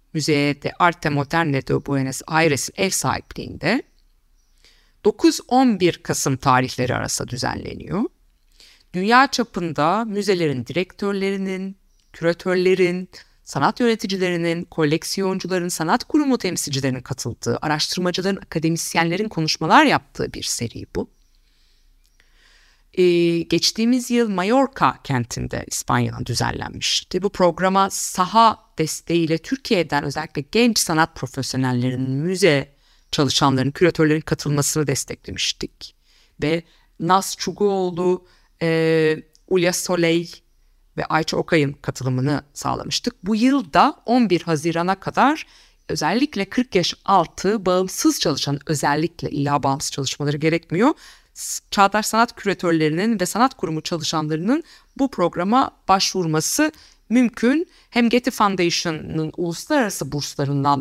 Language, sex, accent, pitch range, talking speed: Turkish, female, native, 145-200 Hz, 95 wpm